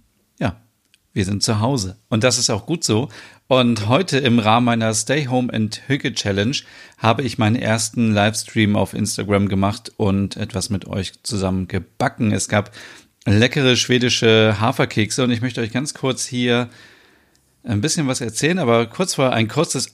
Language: German